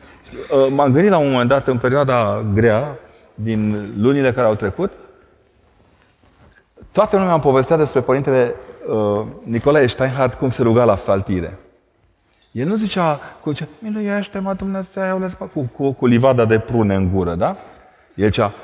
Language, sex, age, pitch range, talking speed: Romanian, male, 30-49, 105-150 Hz, 150 wpm